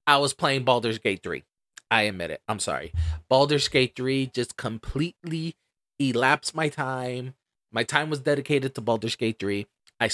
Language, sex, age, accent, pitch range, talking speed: English, male, 30-49, American, 120-155 Hz, 165 wpm